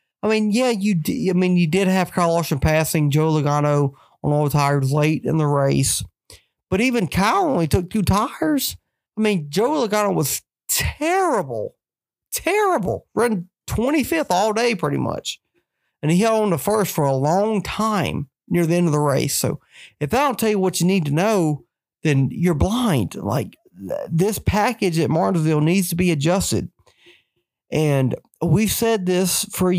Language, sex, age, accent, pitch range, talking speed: English, male, 40-59, American, 150-215 Hz, 180 wpm